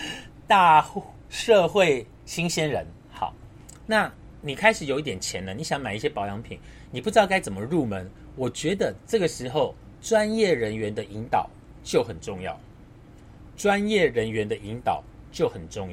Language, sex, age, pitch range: Chinese, male, 30-49, 105-170 Hz